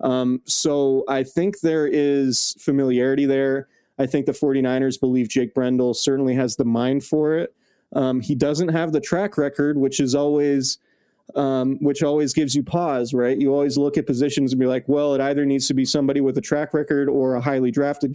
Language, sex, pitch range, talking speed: English, male, 130-145 Hz, 200 wpm